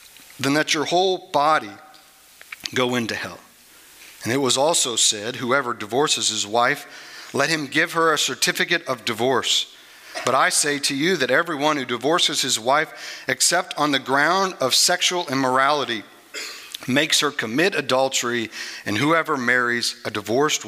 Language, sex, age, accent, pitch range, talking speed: English, male, 50-69, American, 110-145 Hz, 150 wpm